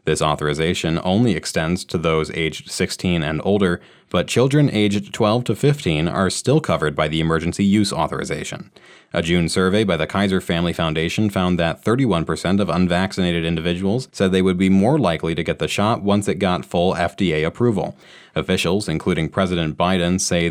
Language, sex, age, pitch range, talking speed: English, male, 30-49, 85-105 Hz, 175 wpm